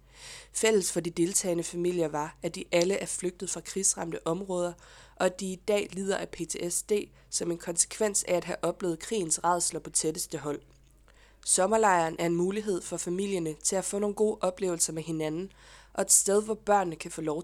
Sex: female